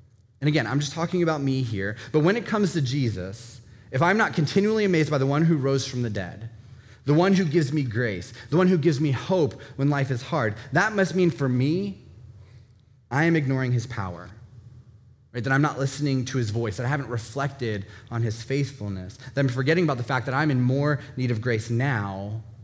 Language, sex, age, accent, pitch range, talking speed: English, male, 20-39, American, 115-150 Hz, 215 wpm